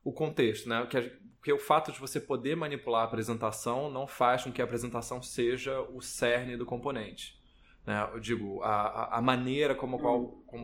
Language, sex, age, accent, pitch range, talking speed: Portuguese, male, 20-39, Brazilian, 110-125 Hz, 185 wpm